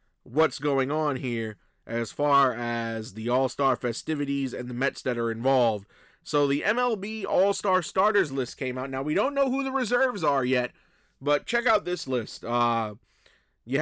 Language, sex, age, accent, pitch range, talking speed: English, male, 20-39, American, 125-160 Hz, 175 wpm